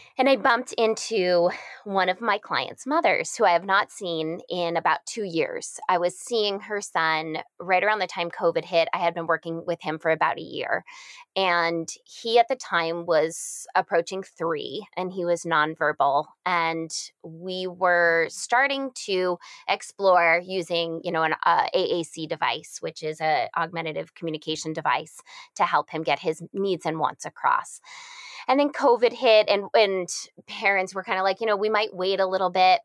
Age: 20-39